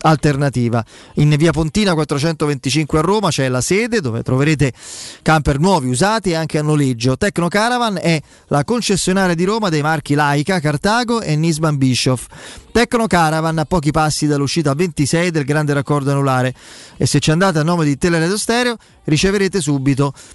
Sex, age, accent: male, 30-49, native